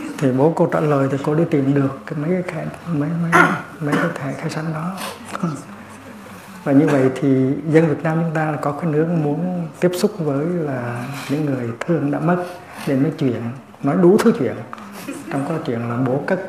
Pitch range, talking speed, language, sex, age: 125-155 Hz, 200 wpm, Vietnamese, male, 60-79